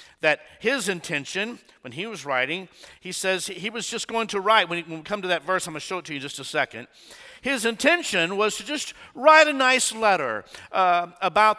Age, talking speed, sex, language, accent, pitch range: 50-69, 225 wpm, male, English, American, 185-260 Hz